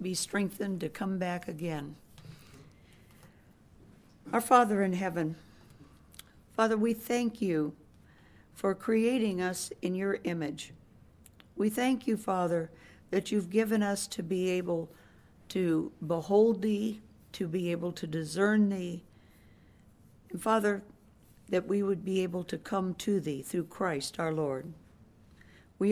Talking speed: 130 wpm